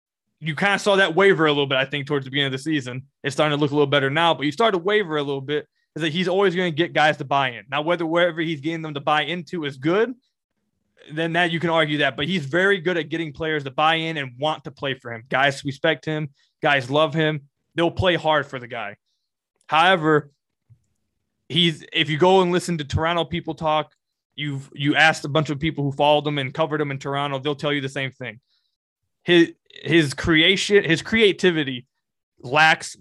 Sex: male